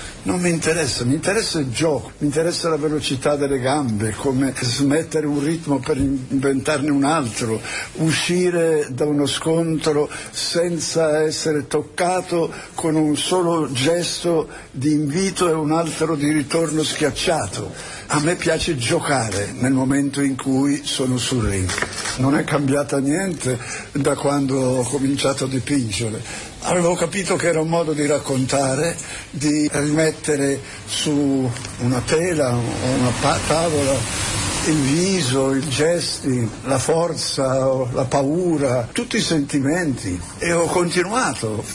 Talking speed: 130 wpm